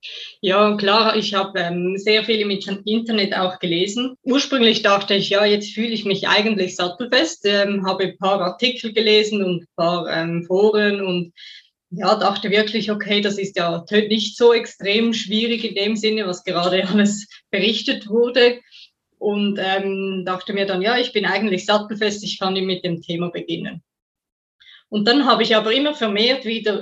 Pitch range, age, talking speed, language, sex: 185-220 Hz, 20-39, 170 wpm, German, female